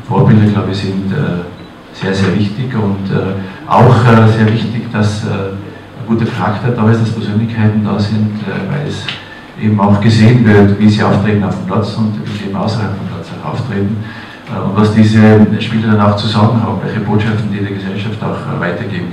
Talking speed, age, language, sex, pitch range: 170 wpm, 50-69, German, male, 100-110 Hz